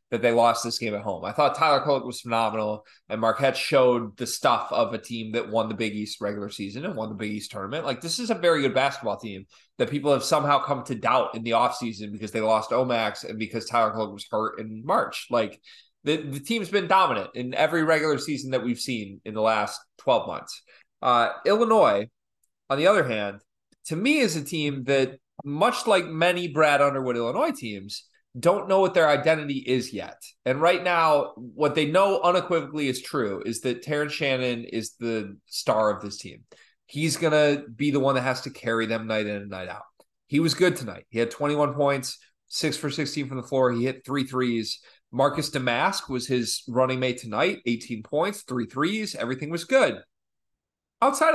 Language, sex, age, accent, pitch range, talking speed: English, male, 20-39, American, 115-155 Hz, 205 wpm